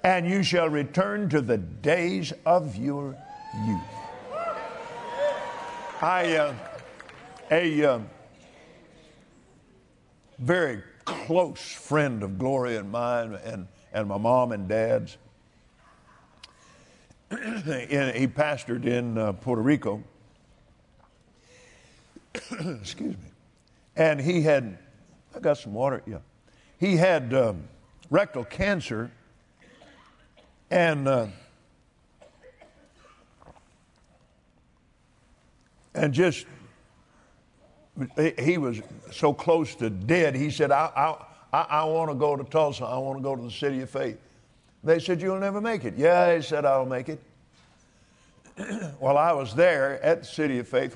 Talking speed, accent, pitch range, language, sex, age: 115 wpm, American, 120-165 Hz, English, male, 50-69